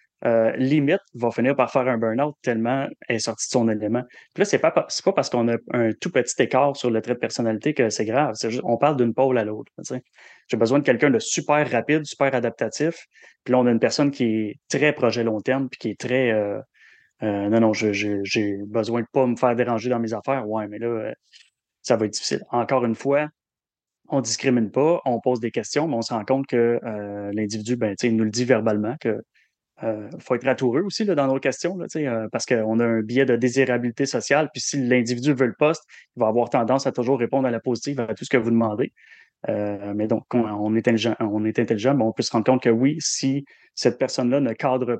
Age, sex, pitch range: 20-39, male, 115-135 Hz